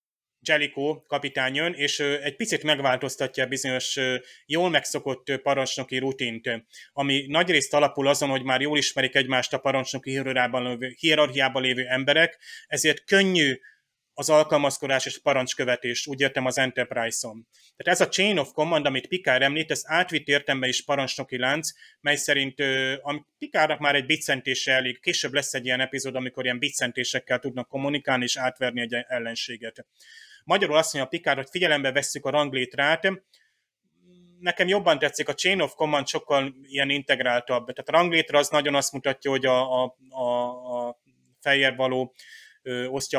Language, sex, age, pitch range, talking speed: Hungarian, male, 30-49, 130-145 Hz, 150 wpm